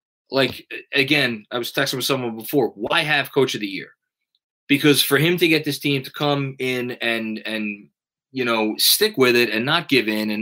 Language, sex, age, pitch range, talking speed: English, male, 20-39, 110-140 Hz, 205 wpm